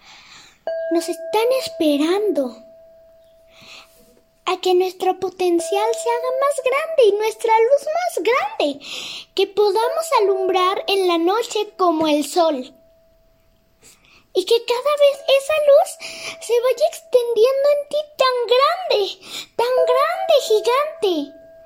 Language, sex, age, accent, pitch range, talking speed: Spanish, female, 20-39, Mexican, 330-430 Hz, 115 wpm